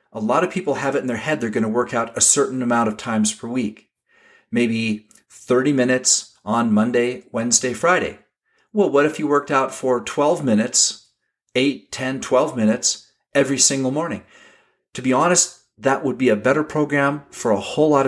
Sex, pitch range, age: male, 110-150 Hz, 40-59